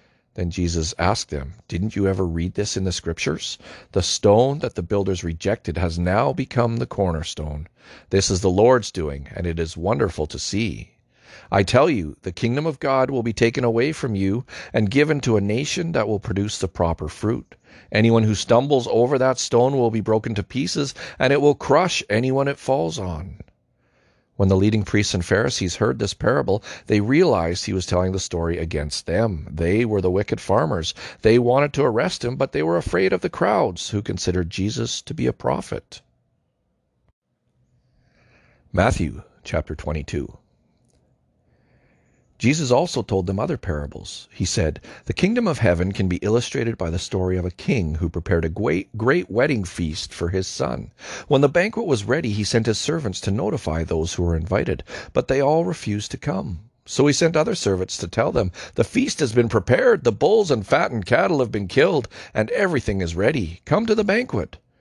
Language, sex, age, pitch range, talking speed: English, male, 40-59, 90-125 Hz, 190 wpm